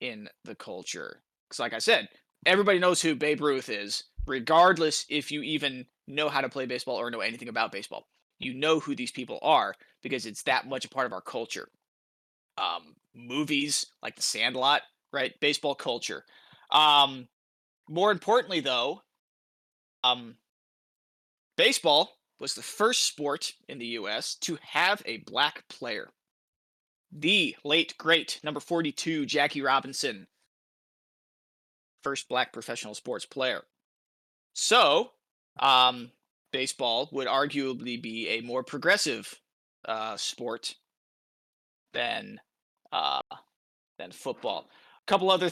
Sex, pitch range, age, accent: male, 125-155 Hz, 20-39, American